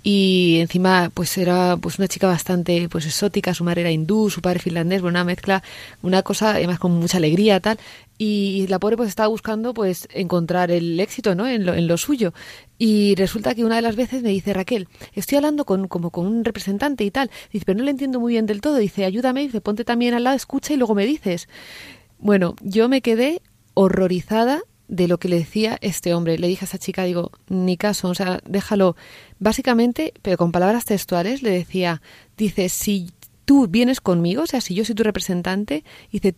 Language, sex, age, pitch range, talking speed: Spanish, female, 30-49, 180-230 Hz, 210 wpm